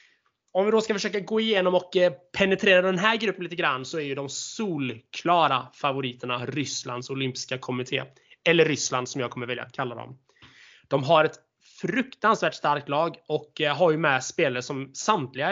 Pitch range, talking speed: 130-170 Hz, 175 wpm